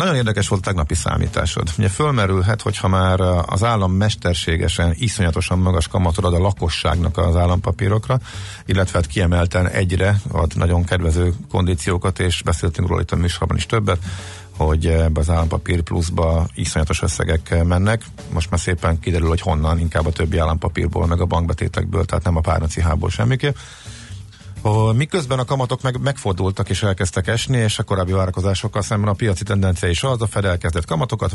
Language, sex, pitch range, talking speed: Hungarian, male, 90-105 Hz, 165 wpm